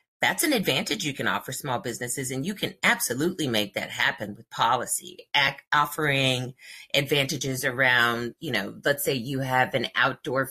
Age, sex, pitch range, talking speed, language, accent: 30-49, female, 120-145 Hz, 160 wpm, English, American